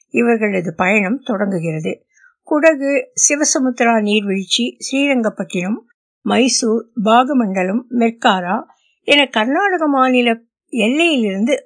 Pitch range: 220-310 Hz